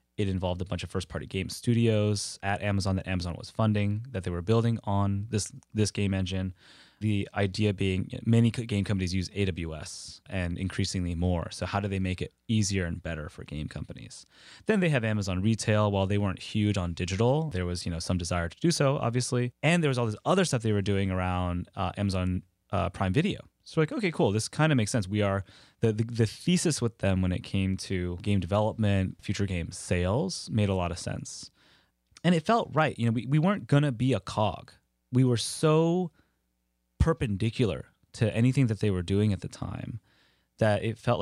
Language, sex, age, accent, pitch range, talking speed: English, male, 20-39, American, 95-115 Hz, 210 wpm